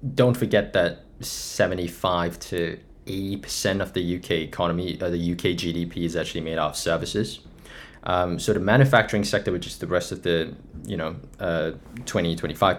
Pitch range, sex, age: 85-105 Hz, male, 20-39